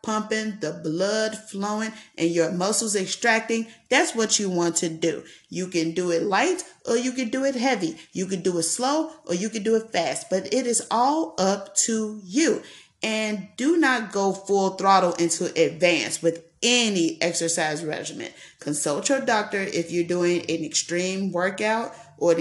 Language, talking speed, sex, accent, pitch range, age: English, 175 wpm, female, American, 165-215 Hz, 30-49